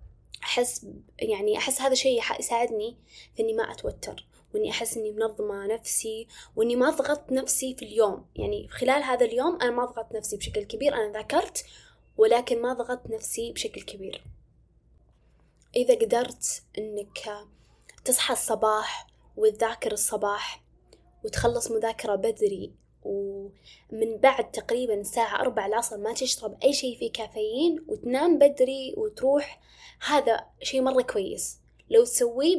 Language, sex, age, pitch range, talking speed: Arabic, female, 10-29, 225-285 Hz, 130 wpm